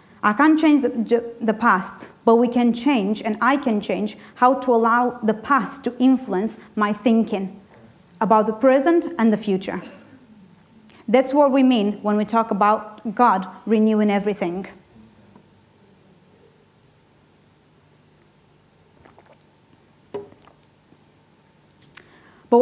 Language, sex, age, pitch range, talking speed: English, female, 30-49, 205-240 Hz, 105 wpm